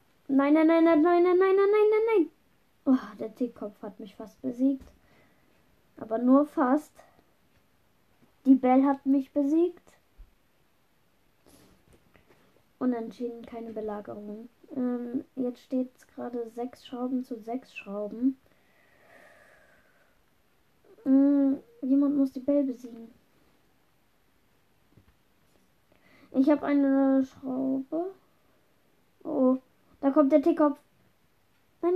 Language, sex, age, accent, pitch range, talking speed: German, female, 10-29, German, 245-300 Hz, 100 wpm